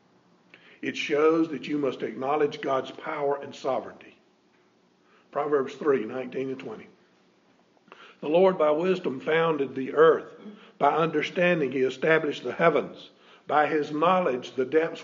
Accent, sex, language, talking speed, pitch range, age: American, male, English, 130 wpm, 130-180 Hz, 50-69